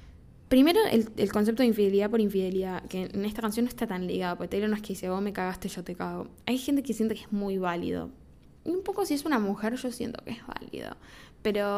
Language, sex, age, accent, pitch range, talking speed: Spanish, female, 10-29, Argentinian, 185-225 Hz, 245 wpm